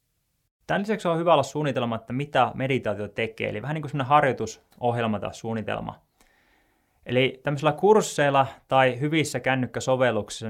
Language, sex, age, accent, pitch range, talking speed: Finnish, male, 20-39, native, 105-140 Hz, 130 wpm